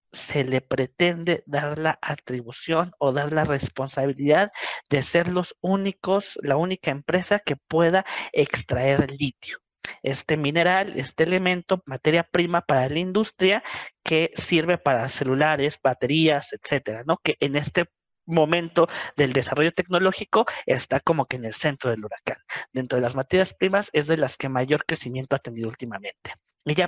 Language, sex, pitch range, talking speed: Spanish, male, 135-175 Hz, 150 wpm